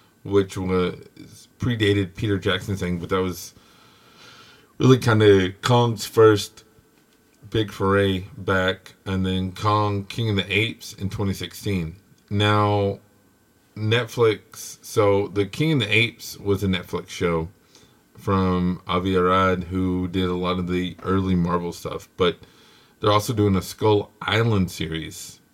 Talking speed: 135 wpm